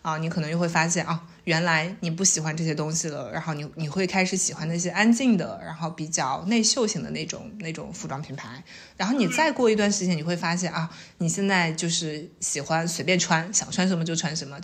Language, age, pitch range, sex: Chinese, 20-39, 155-185 Hz, female